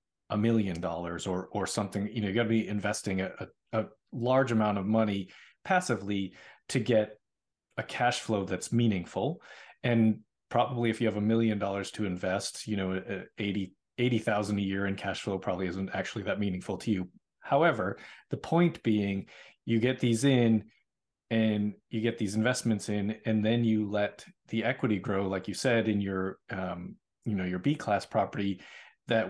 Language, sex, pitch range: English, male, 100-115 Hz